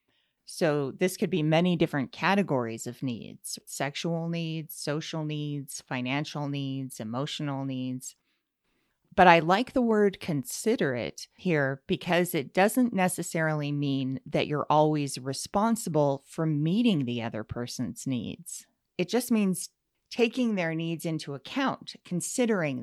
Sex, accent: female, American